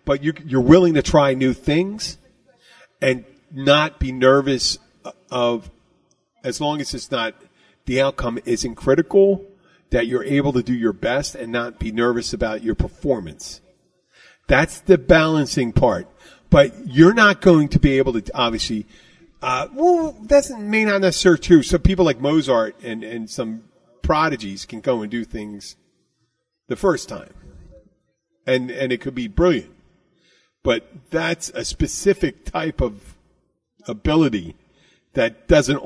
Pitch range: 125-170 Hz